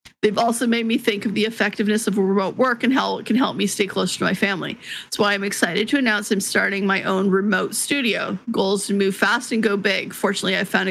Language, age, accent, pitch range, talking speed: English, 40-59, American, 200-235 Hz, 250 wpm